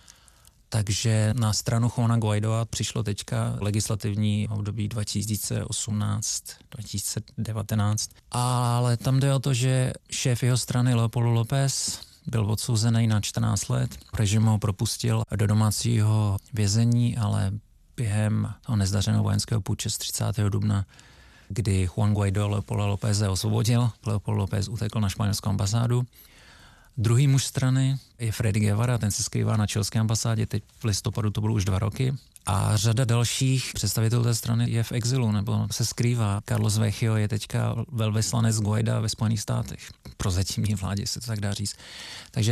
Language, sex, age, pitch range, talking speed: Czech, male, 30-49, 105-120 Hz, 145 wpm